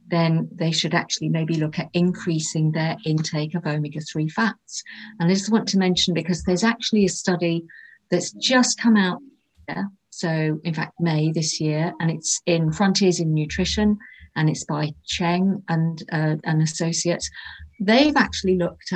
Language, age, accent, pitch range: English, 50-69, British, 155-195 Hz